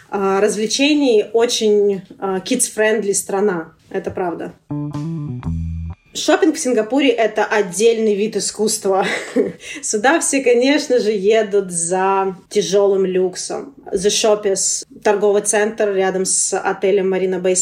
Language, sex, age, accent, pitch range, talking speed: Russian, female, 20-39, native, 195-235 Hz, 105 wpm